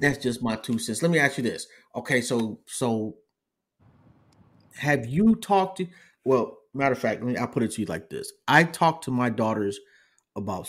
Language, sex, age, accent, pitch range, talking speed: English, male, 30-49, American, 110-135 Hz, 200 wpm